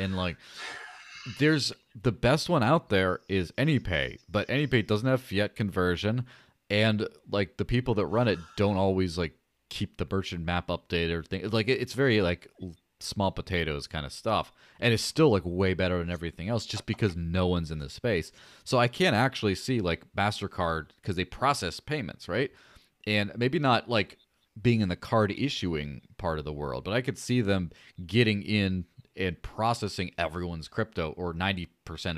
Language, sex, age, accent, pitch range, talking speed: English, male, 30-49, American, 85-115 Hz, 180 wpm